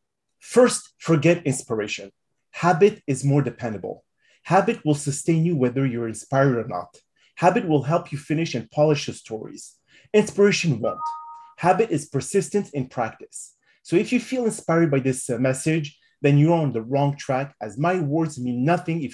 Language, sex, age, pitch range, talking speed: English, male, 30-49, 130-170 Hz, 165 wpm